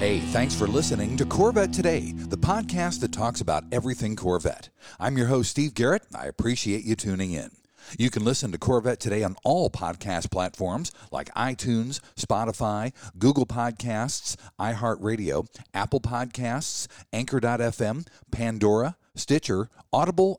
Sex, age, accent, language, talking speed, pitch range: male, 50-69, American, English, 135 wpm, 100-135 Hz